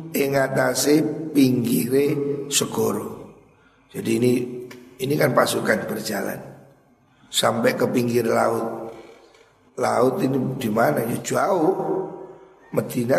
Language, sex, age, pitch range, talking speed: Indonesian, male, 50-69, 125-150 Hz, 90 wpm